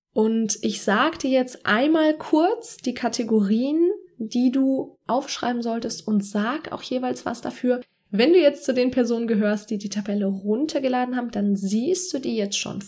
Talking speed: 170 wpm